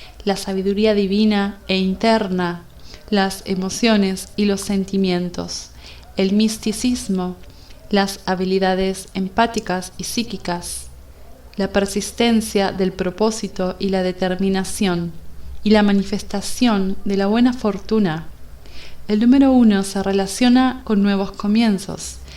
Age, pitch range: 30-49, 185-210 Hz